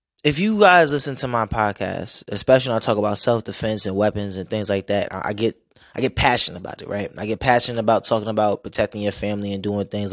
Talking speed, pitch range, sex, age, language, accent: 230 wpm, 105-125 Hz, male, 20-39, English, American